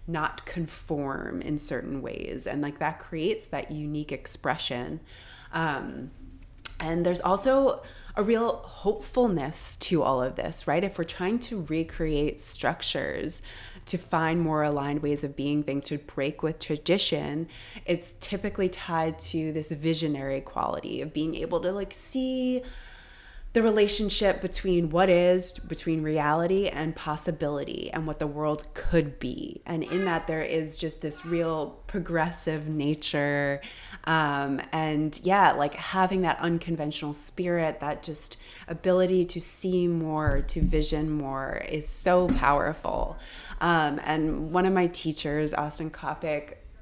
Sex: female